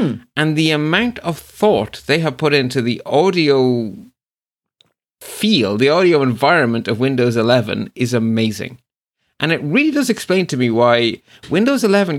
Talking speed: 150 wpm